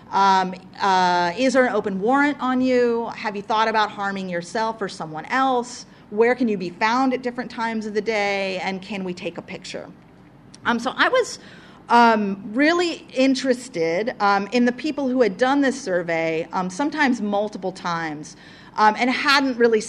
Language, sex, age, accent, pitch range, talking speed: English, female, 40-59, American, 180-240 Hz, 180 wpm